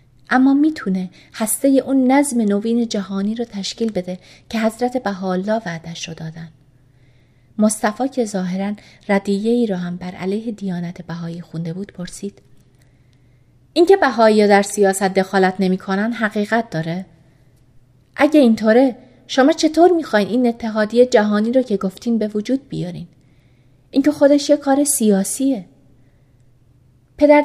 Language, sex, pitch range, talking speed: Persian, female, 170-230 Hz, 125 wpm